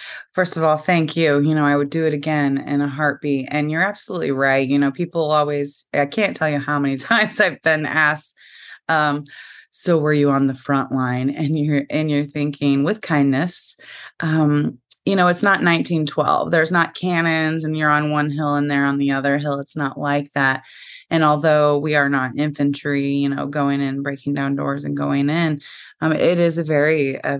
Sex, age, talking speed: female, 20-39, 205 wpm